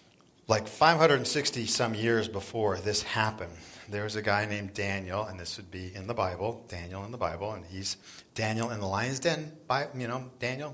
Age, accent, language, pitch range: 40-59, American, English, 90-120 Hz